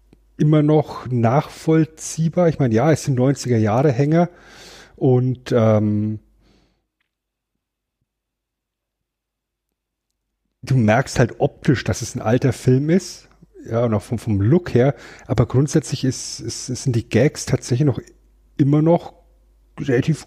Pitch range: 125-160 Hz